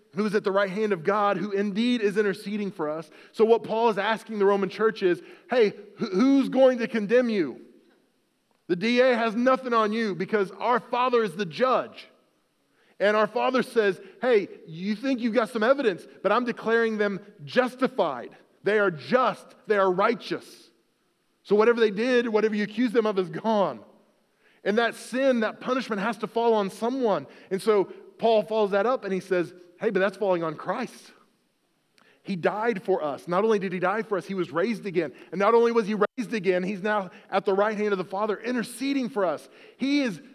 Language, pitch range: English, 180-230 Hz